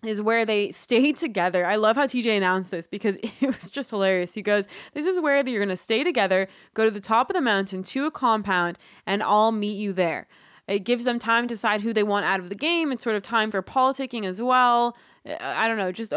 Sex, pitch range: female, 195-235 Hz